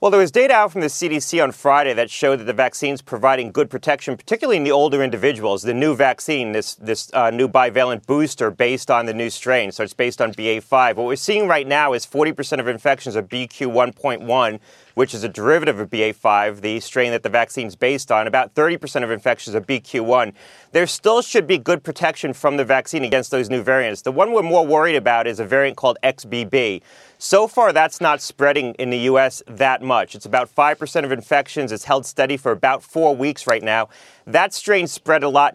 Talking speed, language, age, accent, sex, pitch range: 215 wpm, English, 30-49, American, male, 125-155 Hz